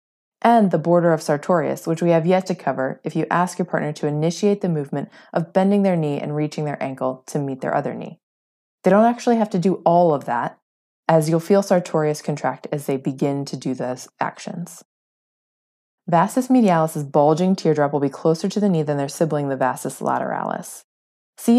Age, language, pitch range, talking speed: 20-39, English, 145-185 Hz, 195 wpm